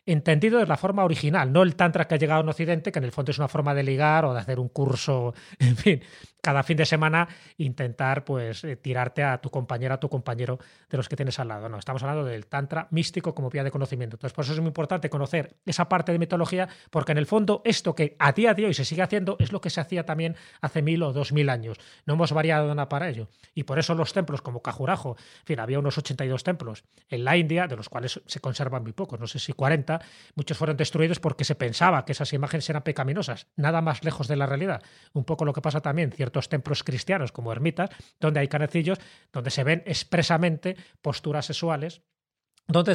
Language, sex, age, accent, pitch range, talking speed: Spanish, male, 30-49, Spanish, 140-170 Hz, 230 wpm